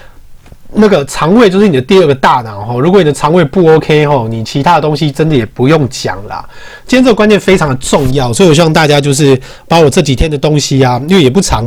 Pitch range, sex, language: 130-180 Hz, male, Chinese